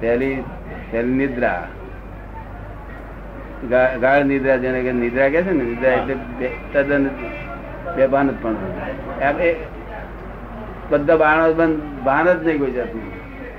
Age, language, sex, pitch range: 60-79, Gujarati, male, 110-145 Hz